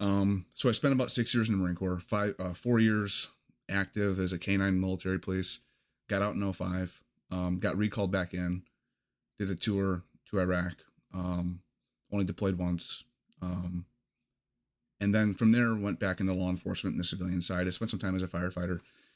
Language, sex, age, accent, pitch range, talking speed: English, male, 30-49, American, 90-110 Hz, 190 wpm